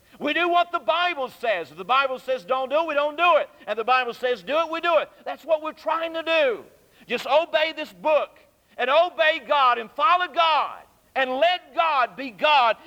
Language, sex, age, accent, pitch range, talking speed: English, male, 50-69, American, 225-300 Hz, 215 wpm